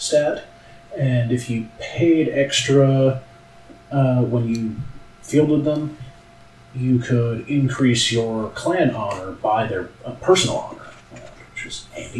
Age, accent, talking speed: 40-59, American, 130 wpm